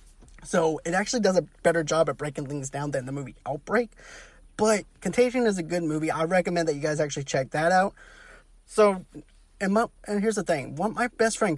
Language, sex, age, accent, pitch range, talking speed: English, male, 30-49, American, 150-190 Hz, 210 wpm